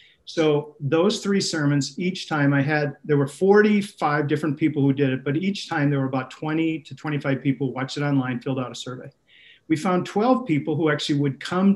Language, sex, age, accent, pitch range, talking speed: English, male, 40-59, American, 140-165 Hz, 210 wpm